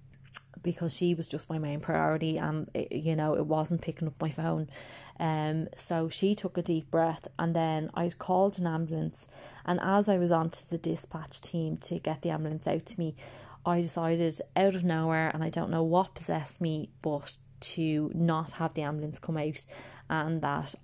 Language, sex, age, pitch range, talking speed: English, female, 20-39, 150-170 Hz, 195 wpm